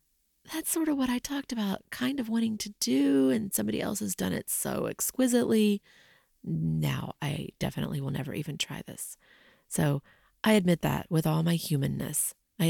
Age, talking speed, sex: 30-49, 175 wpm, female